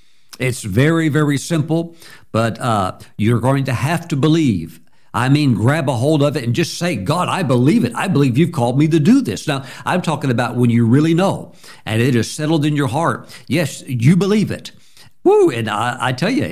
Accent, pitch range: American, 120-165 Hz